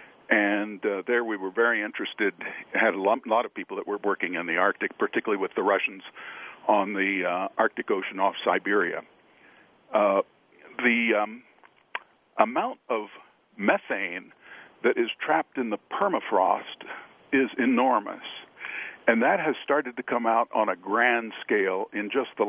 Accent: American